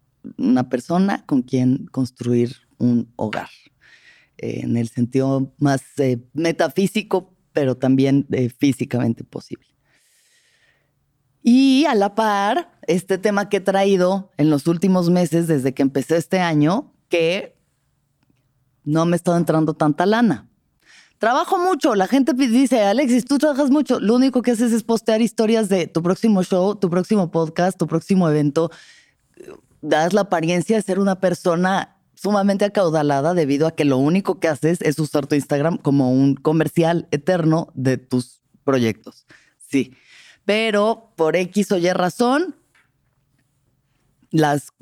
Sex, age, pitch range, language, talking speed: female, 30-49, 140-200 Hz, Spanish, 140 wpm